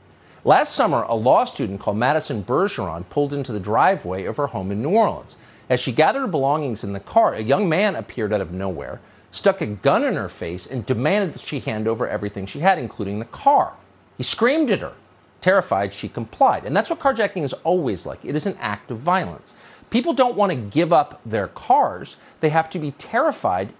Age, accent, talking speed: 40-59, American, 210 wpm